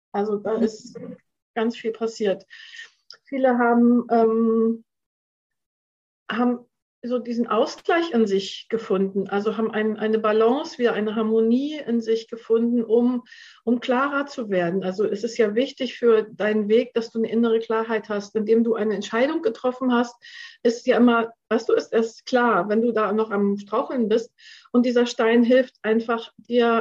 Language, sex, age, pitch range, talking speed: German, female, 50-69, 220-265 Hz, 160 wpm